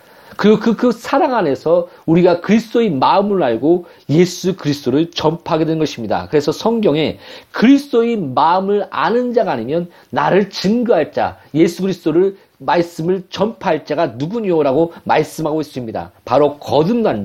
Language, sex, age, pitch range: Korean, male, 40-59, 160-240 Hz